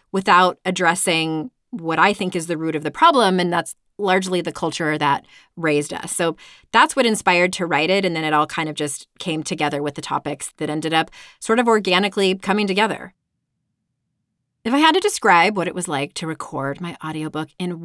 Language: English